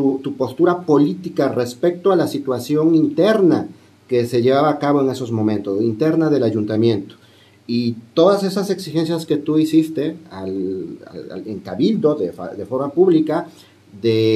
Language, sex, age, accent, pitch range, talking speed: Spanish, male, 40-59, Mexican, 120-170 Hz, 150 wpm